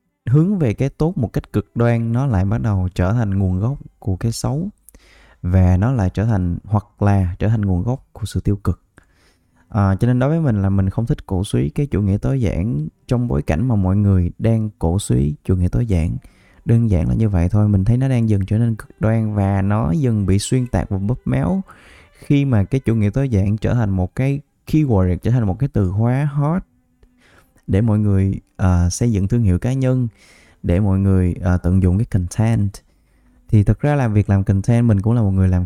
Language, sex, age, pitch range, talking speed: Vietnamese, male, 20-39, 95-120 Hz, 230 wpm